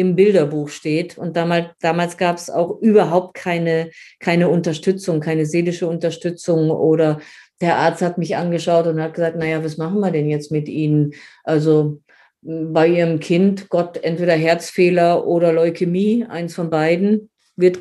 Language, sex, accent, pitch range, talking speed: German, female, German, 175-210 Hz, 150 wpm